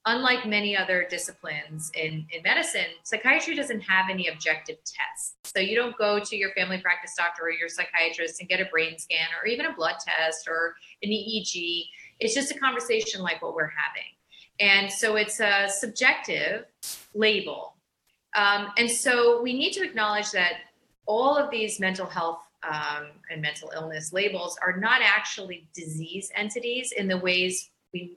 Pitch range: 175-230 Hz